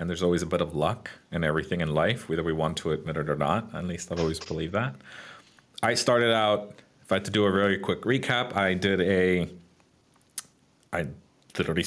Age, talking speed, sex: 30-49, 210 wpm, male